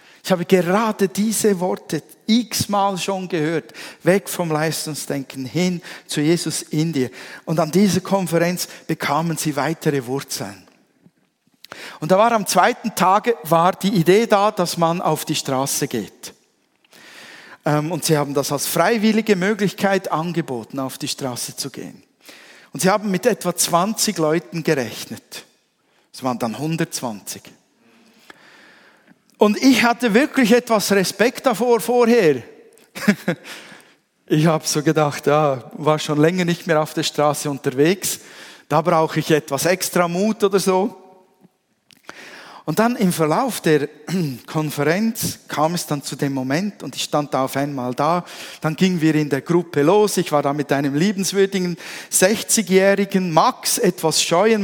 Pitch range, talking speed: 150-195 Hz, 145 wpm